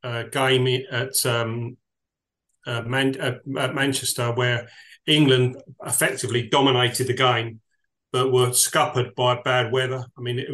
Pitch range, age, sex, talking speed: 120-135 Hz, 40-59, male, 135 wpm